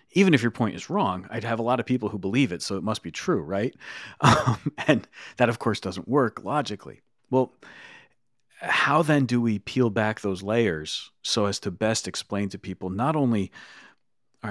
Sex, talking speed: male, 200 wpm